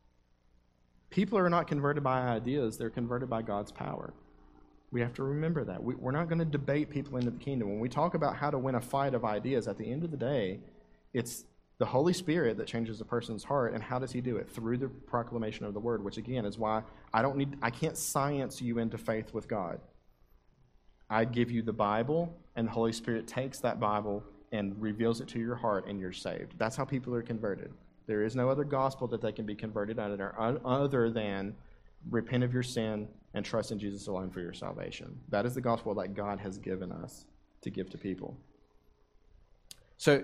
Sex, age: male, 40-59